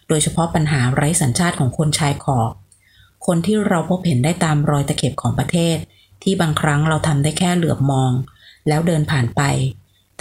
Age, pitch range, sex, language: 30-49, 130-175 Hz, female, Thai